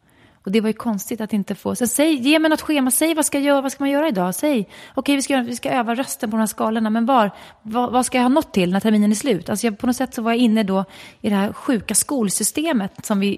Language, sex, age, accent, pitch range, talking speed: English, female, 30-49, Swedish, 200-255 Hz, 295 wpm